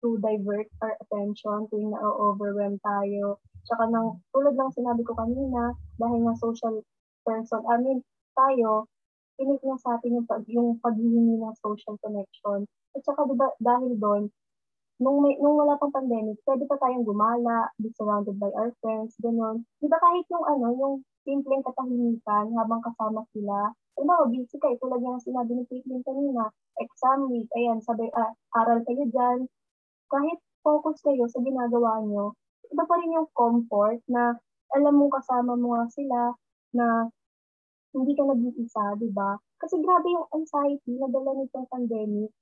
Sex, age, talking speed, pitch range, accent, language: female, 20-39, 160 wpm, 220-270 Hz, native, Filipino